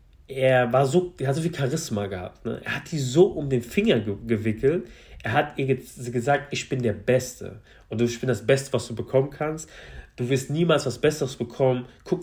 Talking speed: 210 wpm